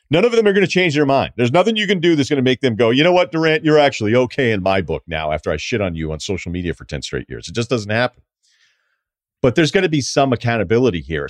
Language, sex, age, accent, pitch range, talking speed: English, male, 40-59, American, 115-145 Hz, 290 wpm